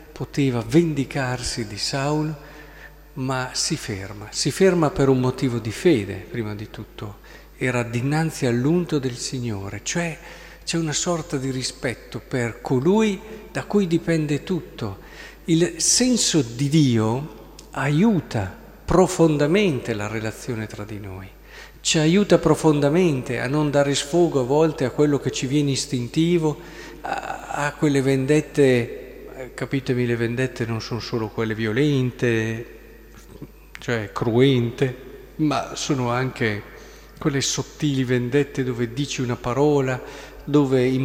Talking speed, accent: 125 wpm, native